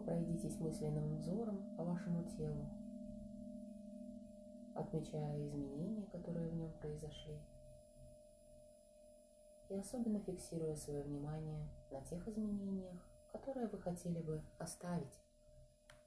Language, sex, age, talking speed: Russian, female, 30-49, 95 wpm